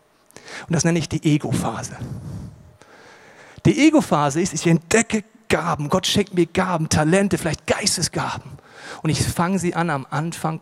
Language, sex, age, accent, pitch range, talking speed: German, male, 40-59, German, 160-210 Hz, 145 wpm